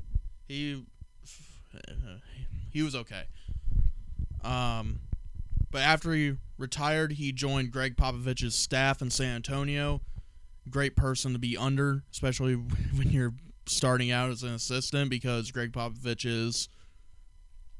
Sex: male